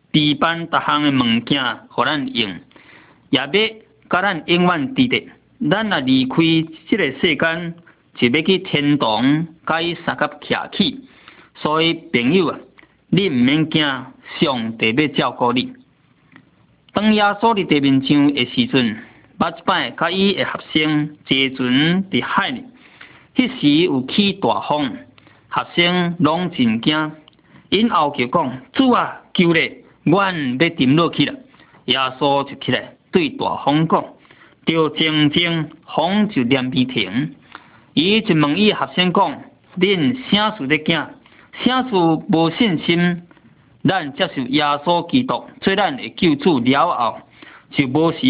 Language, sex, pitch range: Chinese, male, 145-200 Hz